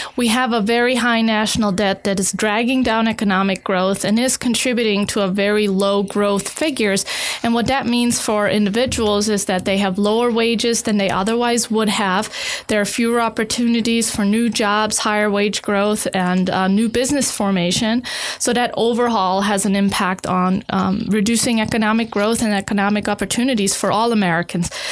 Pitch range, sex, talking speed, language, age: 200-235 Hz, female, 170 wpm, English, 20-39